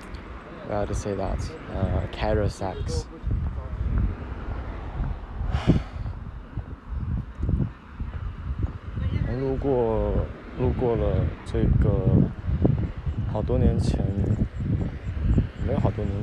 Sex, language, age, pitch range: male, Chinese, 20-39, 90-115 Hz